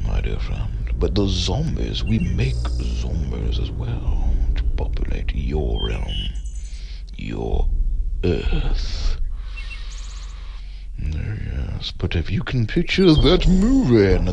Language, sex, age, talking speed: English, male, 60-79, 110 wpm